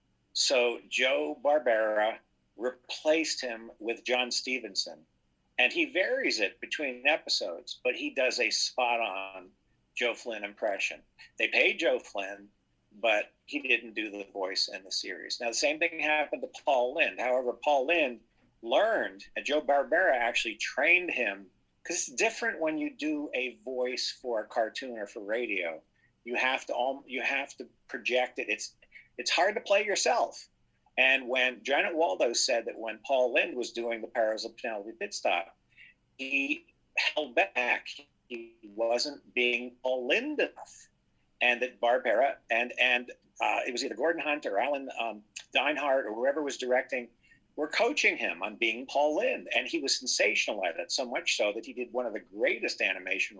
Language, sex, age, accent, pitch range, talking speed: English, male, 50-69, American, 115-145 Hz, 165 wpm